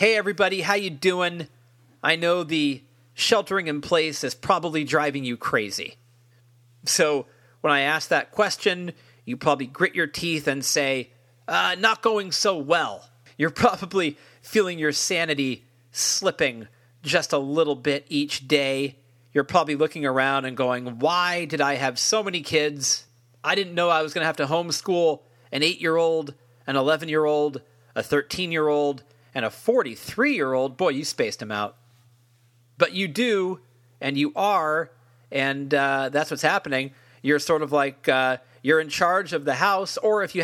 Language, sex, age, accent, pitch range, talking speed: English, male, 40-59, American, 125-165 Hz, 160 wpm